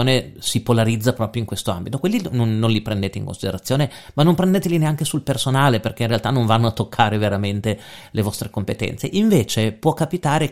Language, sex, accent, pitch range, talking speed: Italian, male, native, 105-130 Hz, 185 wpm